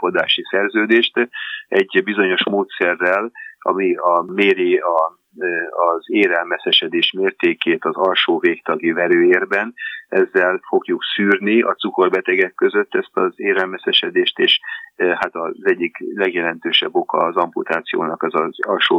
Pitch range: 340-400 Hz